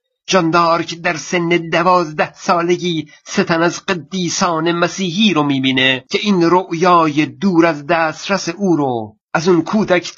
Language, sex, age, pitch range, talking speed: Persian, male, 50-69, 160-195 Hz, 135 wpm